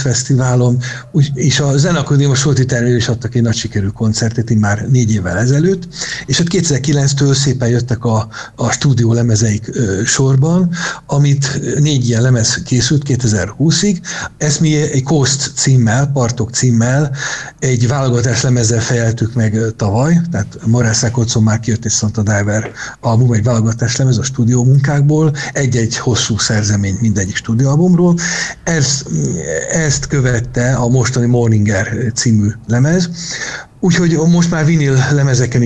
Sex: male